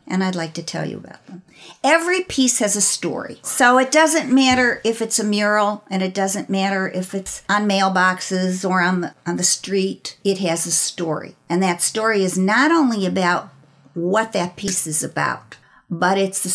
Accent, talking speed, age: American, 190 wpm, 50-69